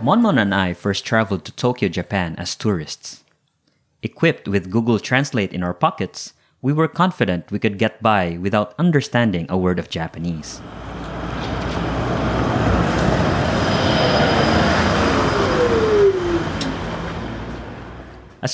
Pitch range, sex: 90-135 Hz, male